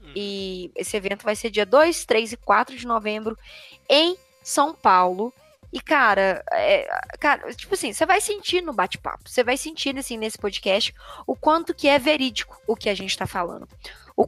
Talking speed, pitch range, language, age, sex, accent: 185 wpm, 210-300 Hz, Portuguese, 10-29, female, Brazilian